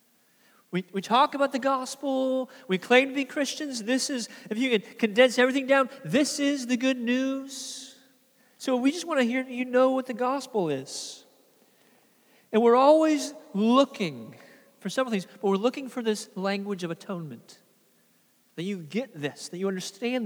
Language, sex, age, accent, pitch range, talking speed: English, male, 40-59, American, 215-265 Hz, 170 wpm